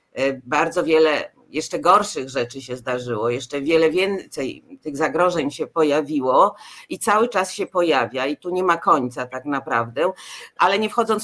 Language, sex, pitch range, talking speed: Polish, female, 155-205 Hz, 155 wpm